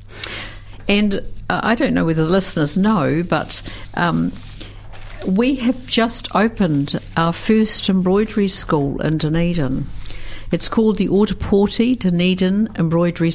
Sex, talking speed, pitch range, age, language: female, 120 wpm, 110-185 Hz, 60-79, English